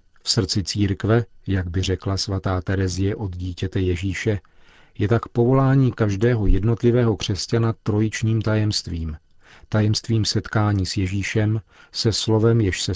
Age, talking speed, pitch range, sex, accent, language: 40-59, 125 wpm, 95-110 Hz, male, native, Czech